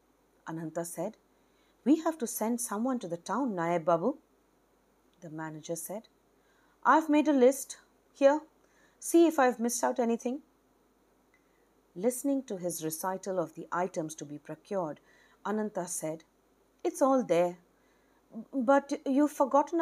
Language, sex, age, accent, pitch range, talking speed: English, female, 40-59, Indian, 185-300 Hz, 145 wpm